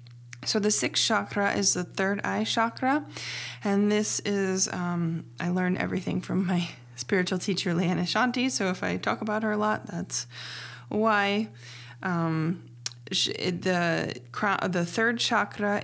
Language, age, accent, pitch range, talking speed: English, 20-39, American, 175-210 Hz, 140 wpm